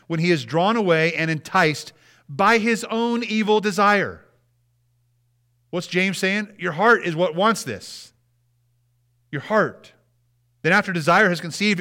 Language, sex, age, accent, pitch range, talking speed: English, male, 40-59, American, 120-175 Hz, 140 wpm